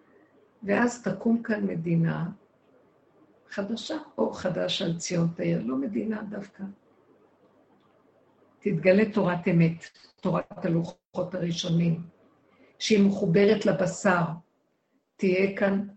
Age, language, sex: 60-79, Hebrew, female